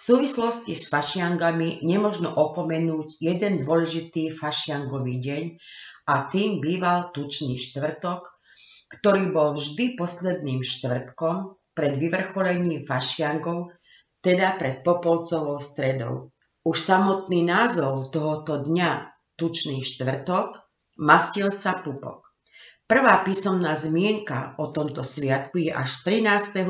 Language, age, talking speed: Slovak, 40-59, 105 wpm